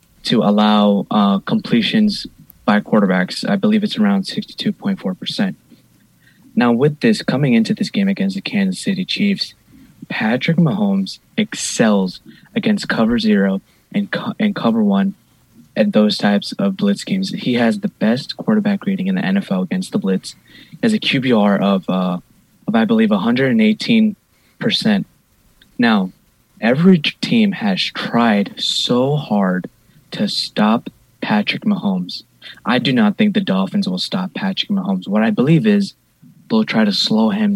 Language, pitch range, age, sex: English, 185-220 Hz, 20-39, male